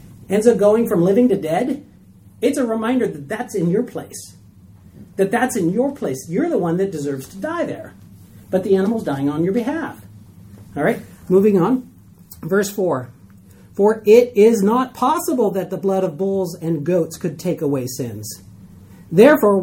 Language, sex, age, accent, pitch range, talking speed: English, male, 40-59, American, 160-240 Hz, 175 wpm